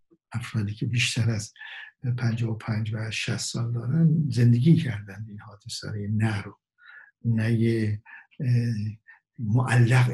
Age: 60-79